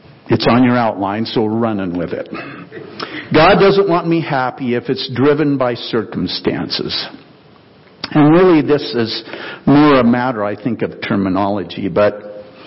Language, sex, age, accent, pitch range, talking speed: English, male, 60-79, American, 120-175 Hz, 145 wpm